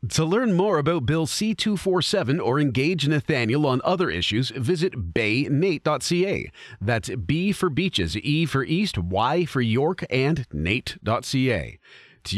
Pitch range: 115-170 Hz